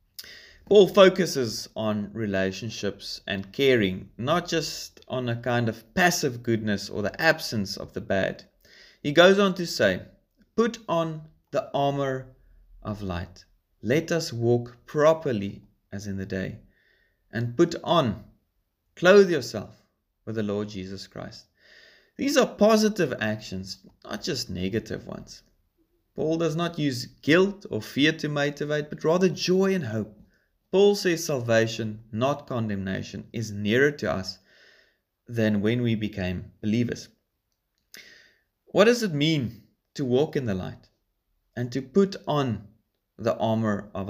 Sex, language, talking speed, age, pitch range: male, English, 135 wpm, 30-49, 100-155 Hz